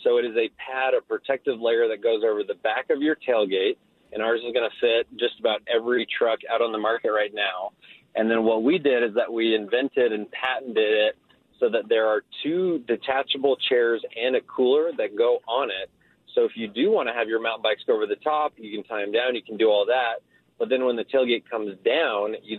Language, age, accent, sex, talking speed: English, 30-49, American, male, 240 wpm